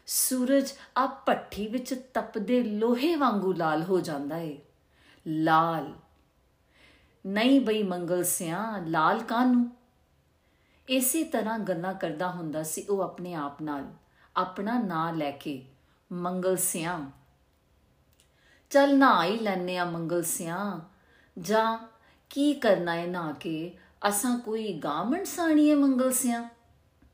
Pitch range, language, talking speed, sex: 165-230 Hz, Punjabi, 100 wpm, female